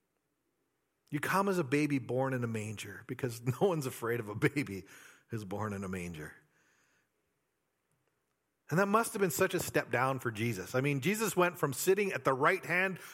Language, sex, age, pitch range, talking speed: English, male, 40-59, 130-180 Hz, 190 wpm